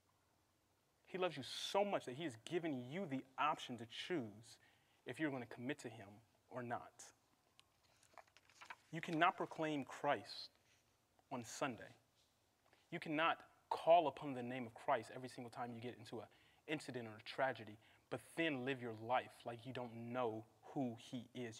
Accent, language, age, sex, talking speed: American, English, 30-49, male, 165 wpm